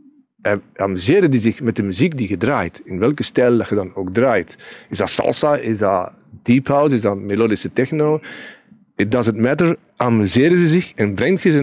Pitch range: 105-145 Hz